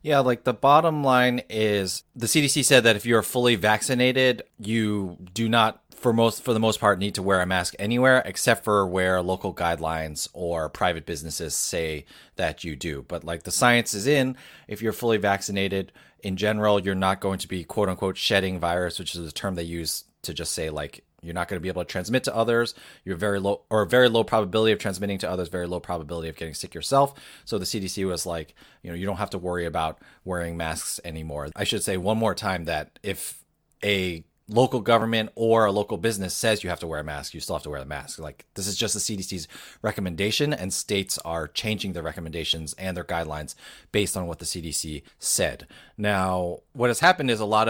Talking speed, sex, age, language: 220 wpm, male, 20-39, English